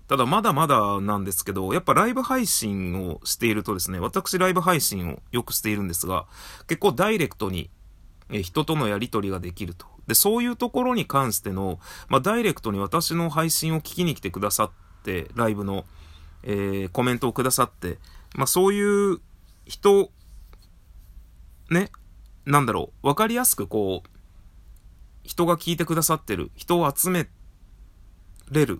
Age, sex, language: 30-49, male, Japanese